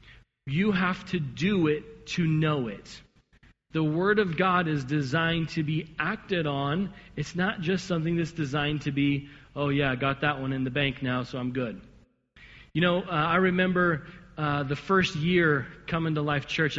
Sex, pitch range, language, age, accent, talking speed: male, 145-180 Hz, English, 40-59, American, 185 wpm